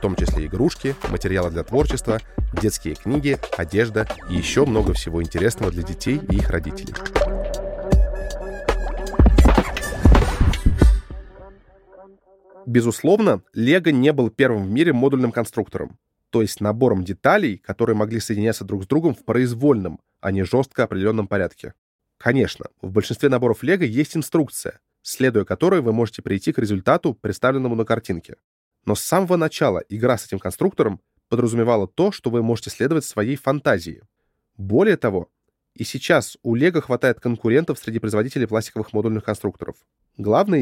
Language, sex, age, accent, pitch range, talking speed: Russian, male, 20-39, native, 100-130 Hz, 135 wpm